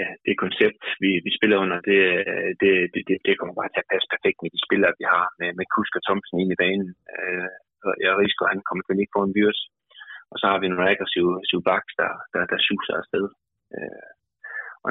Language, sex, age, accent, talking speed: Danish, male, 20-39, native, 210 wpm